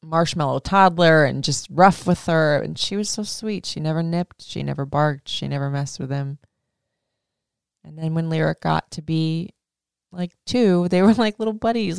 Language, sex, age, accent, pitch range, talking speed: English, female, 20-39, American, 150-185 Hz, 185 wpm